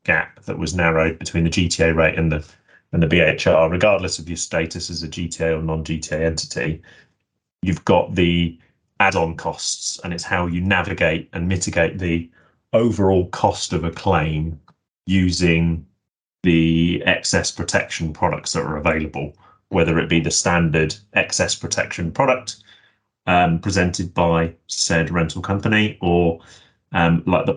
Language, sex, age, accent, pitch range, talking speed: English, male, 30-49, British, 80-90 Hz, 145 wpm